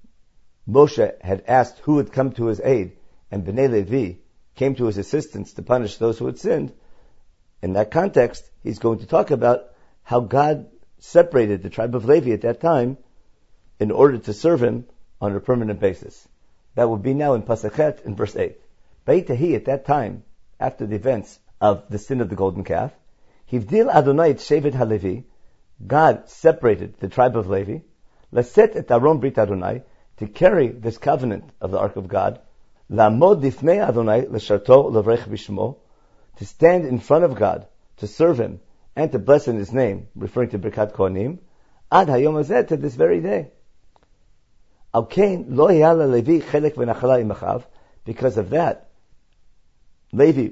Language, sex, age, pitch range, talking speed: English, male, 50-69, 105-135 Hz, 135 wpm